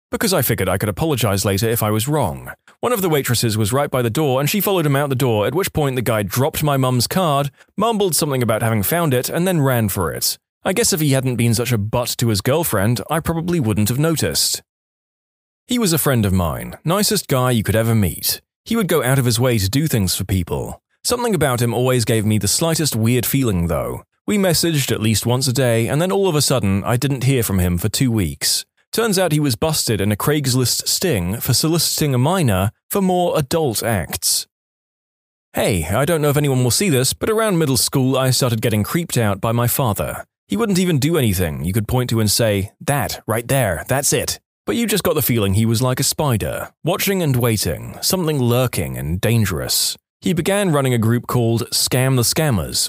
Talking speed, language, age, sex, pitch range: 230 wpm, English, 30-49, male, 110-155 Hz